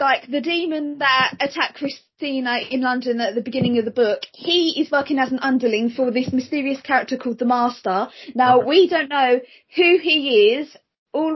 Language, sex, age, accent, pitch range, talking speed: English, female, 20-39, British, 245-285 Hz, 185 wpm